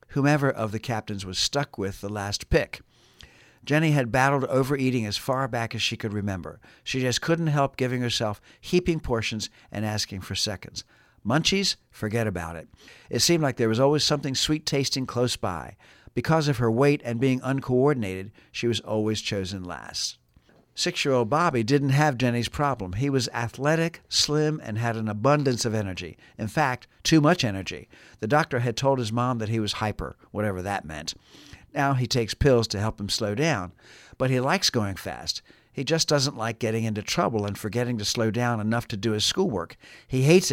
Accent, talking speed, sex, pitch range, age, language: American, 185 wpm, male, 105-140 Hz, 60-79, English